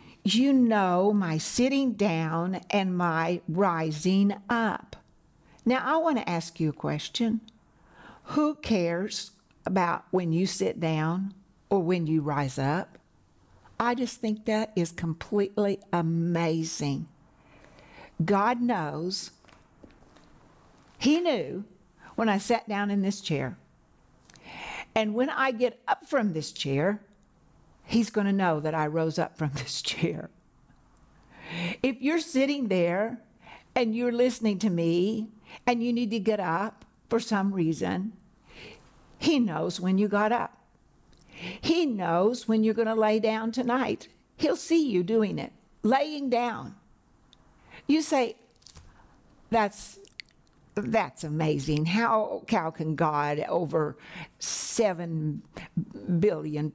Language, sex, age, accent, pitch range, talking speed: English, female, 60-79, American, 170-230 Hz, 125 wpm